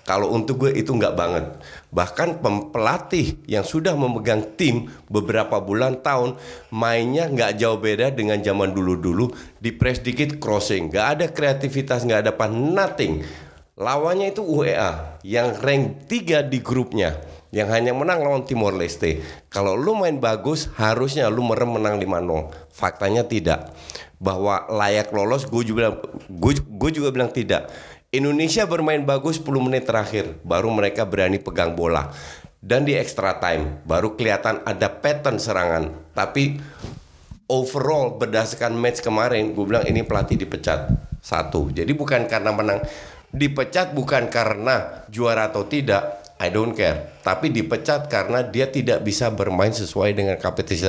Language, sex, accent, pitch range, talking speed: Indonesian, male, native, 100-125 Hz, 145 wpm